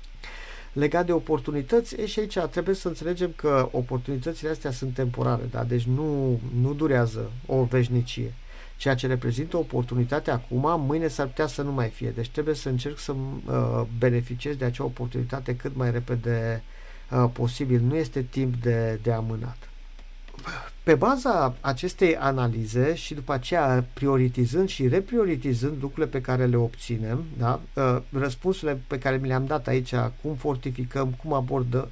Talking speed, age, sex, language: 150 wpm, 50-69, male, English